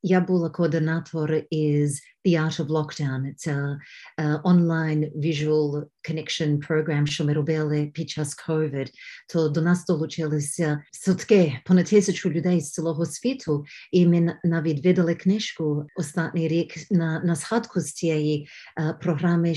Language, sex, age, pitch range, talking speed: Ukrainian, female, 50-69, 155-180 Hz, 135 wpm